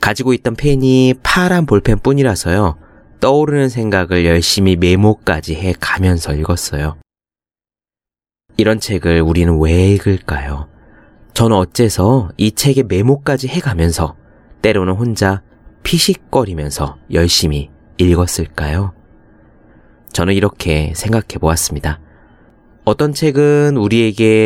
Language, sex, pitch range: Korean, male, 85-120 Hz